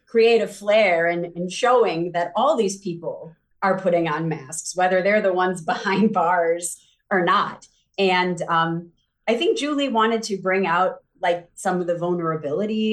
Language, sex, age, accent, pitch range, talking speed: English, female, 30-49, American, 170-215 Hz, 165 wpm